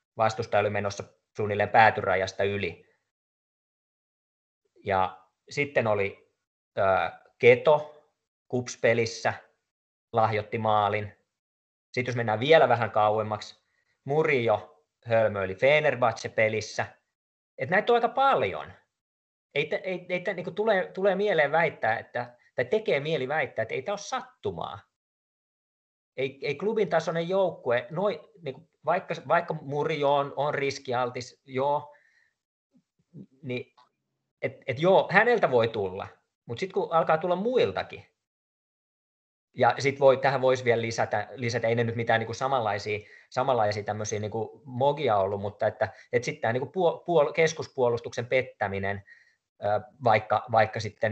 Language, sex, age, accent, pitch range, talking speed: Finnish, male, 30-49, native, 110-165 Hz, 120 wpm